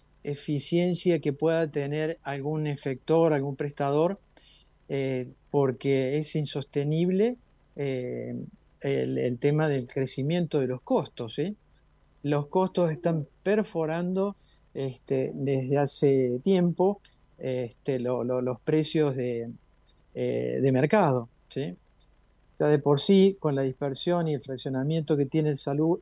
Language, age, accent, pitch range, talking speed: Italian, 50-69, Argentinian, 130-155 Hz, 125 wpm